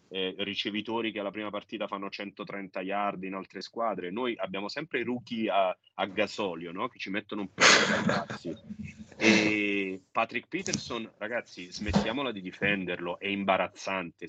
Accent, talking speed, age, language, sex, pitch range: native, 150 wpm, 30-49, Italian, male, 90-105 Hz